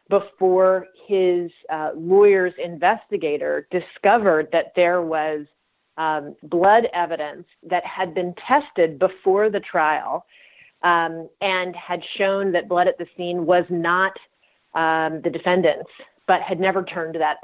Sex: female